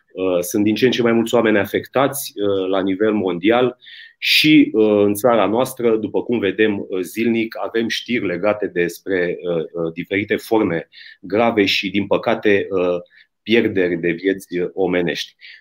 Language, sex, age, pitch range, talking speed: Romanian, male, 30-49, 100-125 Hz, 130 wpm